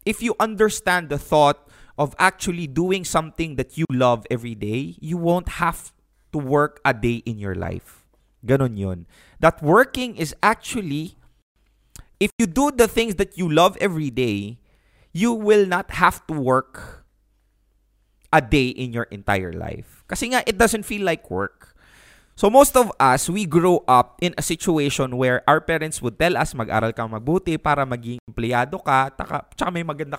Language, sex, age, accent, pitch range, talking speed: English, male, 20-39, Filipino, 125-185 Hz, 165 wpm